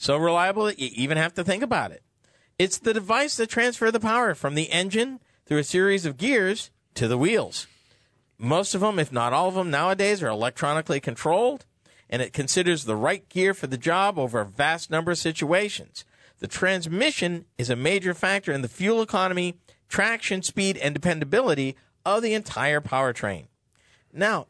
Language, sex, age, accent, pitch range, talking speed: English, male, 50-69, American, 140-205 Hz, 180 wpm